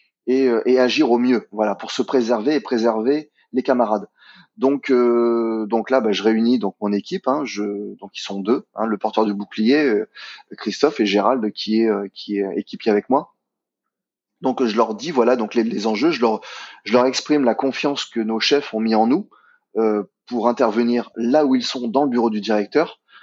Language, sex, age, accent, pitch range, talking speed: French, male, 20-39, French, 110-130 Hz, 210 wpm